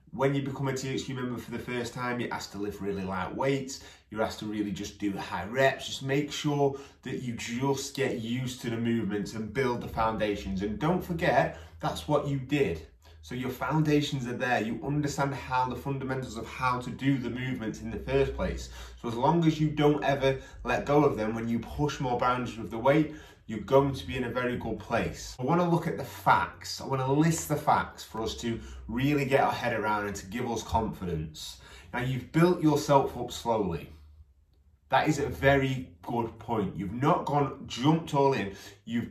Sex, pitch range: male, 105-140 Hz